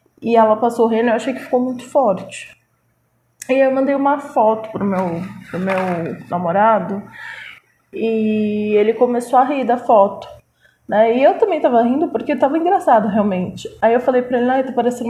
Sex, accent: female, Brazilian